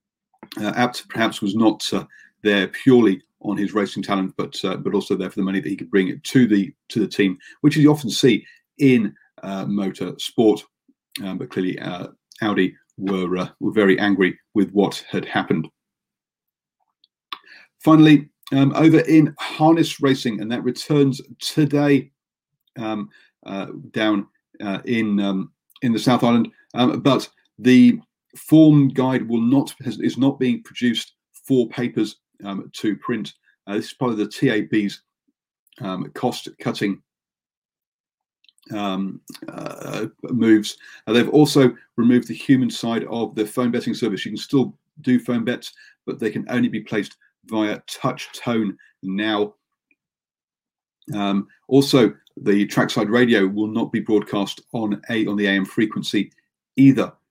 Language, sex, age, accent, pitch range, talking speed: English, male, 40-59, British, 100-135 Hz, 150 wpm